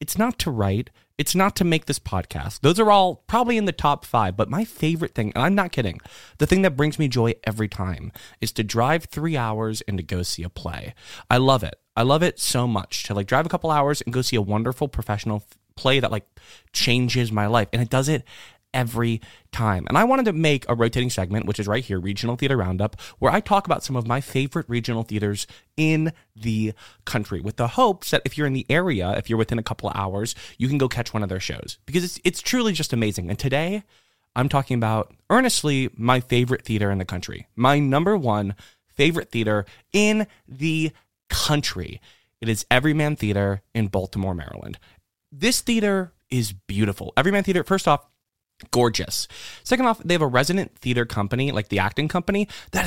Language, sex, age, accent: English, male, 30-49, American